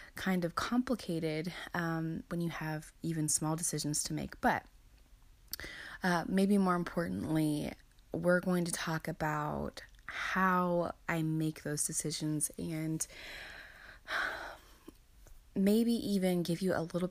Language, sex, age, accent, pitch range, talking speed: English, female, 20-39, American, 155-185 Hz, 120 wpm